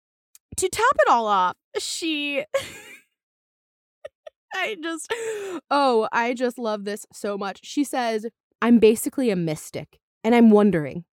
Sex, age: female, 20-39